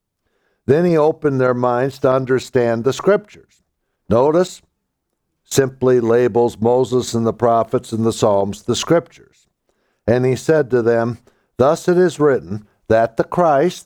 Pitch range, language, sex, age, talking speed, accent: 120-155 Hz, Swedish, male, 60-79, 145 wpm, American